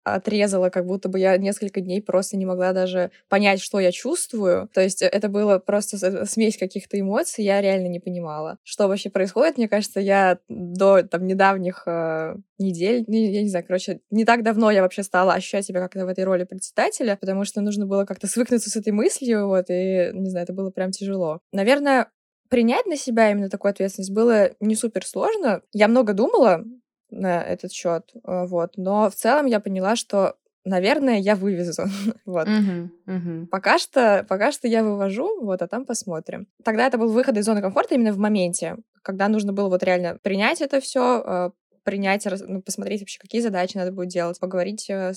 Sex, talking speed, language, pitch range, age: female, 180 wpm, Russian, 185-215 Hz, 20-39